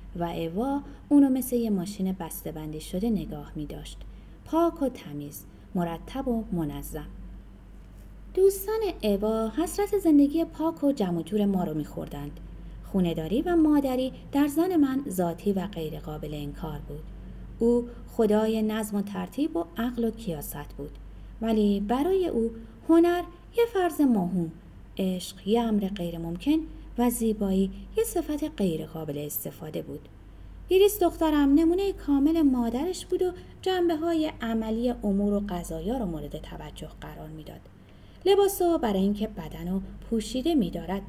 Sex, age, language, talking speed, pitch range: female, 30-49, Persian, 135 wpm, 180-305 Hz